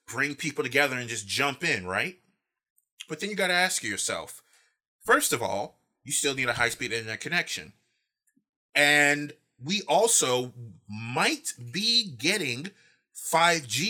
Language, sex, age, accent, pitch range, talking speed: English, male, 30-49, American, 115-155 Hz, 140 wpm